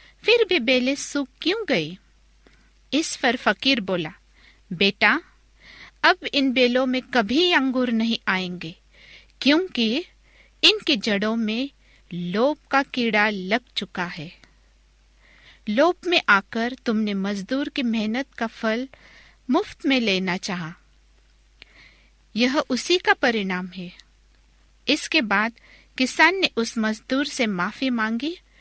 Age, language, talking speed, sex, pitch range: 50-69, Hindi, 110 wpm, female, 205-280 Hz